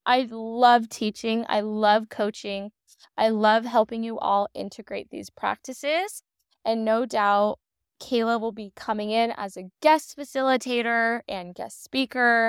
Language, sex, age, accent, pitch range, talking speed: English, female, 10-29, American, 205-250 Hz, 140 wpm